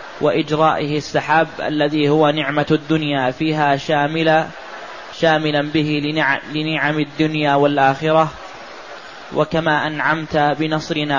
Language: Arabic